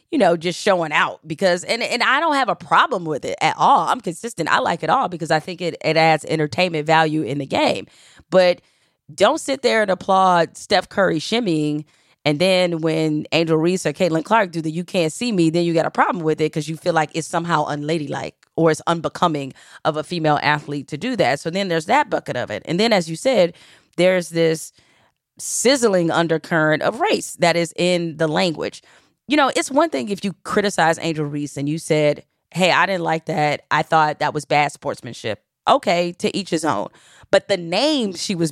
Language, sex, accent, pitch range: English, female, American, 150-180 Hz